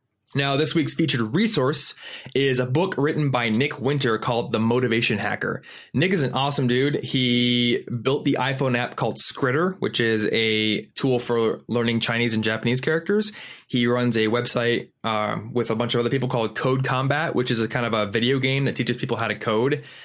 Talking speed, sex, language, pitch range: 200 wpm, male, English, 115-135 Hz